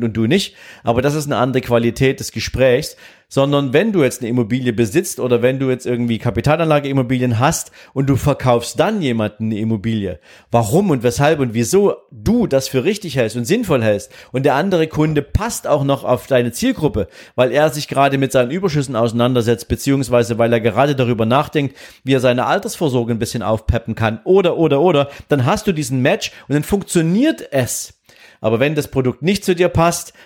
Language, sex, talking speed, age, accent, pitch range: German, male, 190 wpm, 40-59, German, 120-155 Hz